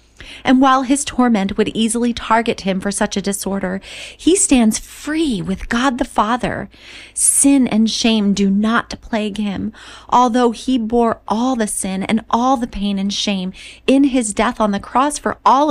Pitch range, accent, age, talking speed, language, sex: 220-285 Hz, American, 30-49, 175 wpm, English, female